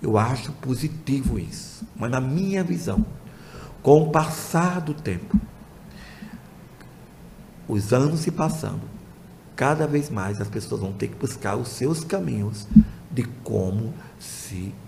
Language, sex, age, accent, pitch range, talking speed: Portuguese, male, 50-69, Brazilian, 105-150 Hz, 130 wpm